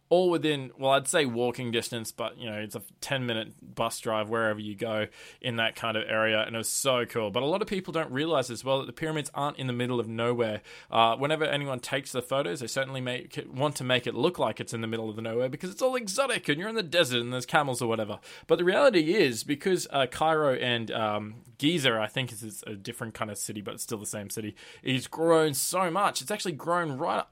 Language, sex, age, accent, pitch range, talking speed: English, male, 20-39, Australian, 115-160 Hz, 255 wpm